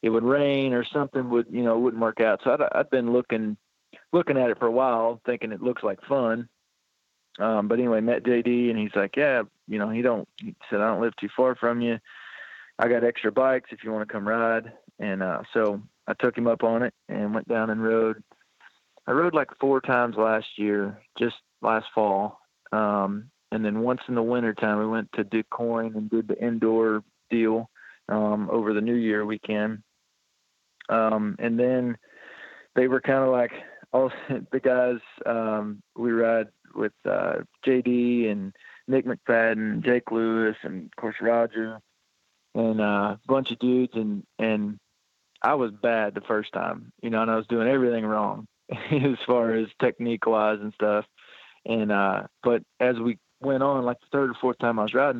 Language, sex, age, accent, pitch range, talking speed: English, male, 40-59, American, 110-125 Hz, 190 wpm